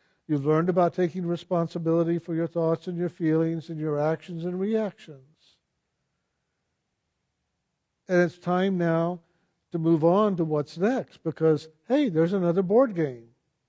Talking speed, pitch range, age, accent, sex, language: 140 wpm, 160-185 Hz, 60-79, American, male, English